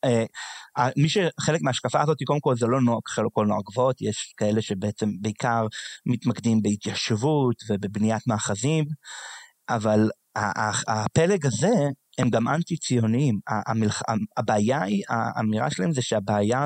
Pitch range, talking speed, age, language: 110-145 Hz, 135 wpm, 30-49, Hebrew